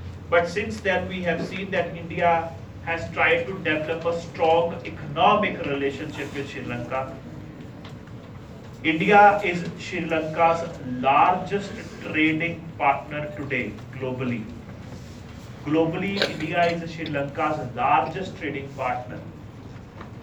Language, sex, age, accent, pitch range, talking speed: English, male, 30-49, Indian, 130-175 Hz, 105 wpm